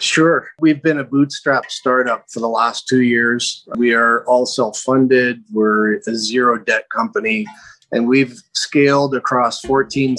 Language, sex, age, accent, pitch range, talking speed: English, male, 30-49, American, 115-140 Hz, 145 wpm